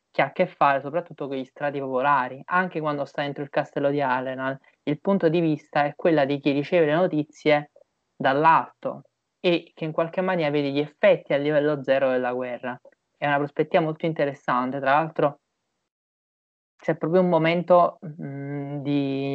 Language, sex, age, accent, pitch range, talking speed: Italian, male, 20-39, native, 140-170 Hz, 175 wpm